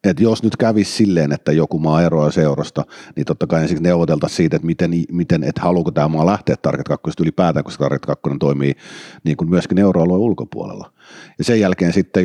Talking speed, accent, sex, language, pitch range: 195 wpm, native, male, Finnish, 80-100 Hz